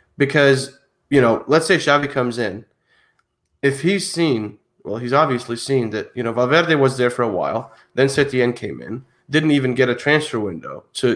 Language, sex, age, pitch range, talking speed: English, male, 20-39, 120-145 Hz, 190 wpm